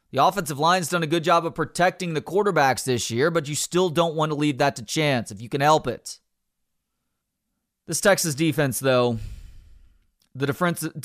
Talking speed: 185 wpm